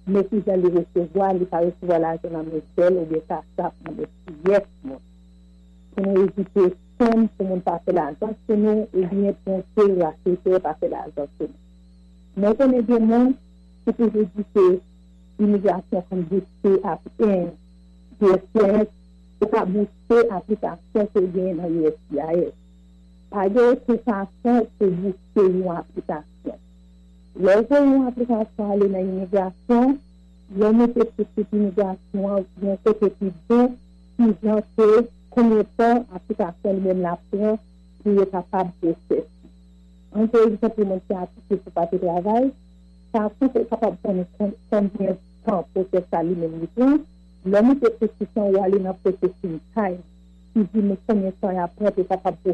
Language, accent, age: English, Indian, 50-69